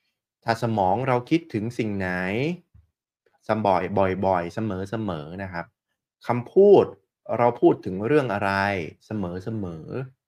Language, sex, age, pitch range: Thai, male, 20-39, 95-125 Hz